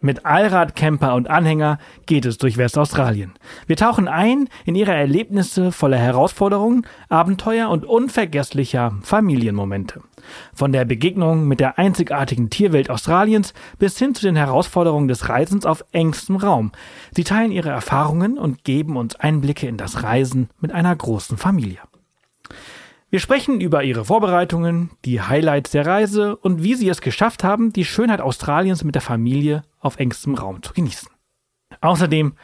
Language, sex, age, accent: German, male, 40-59, German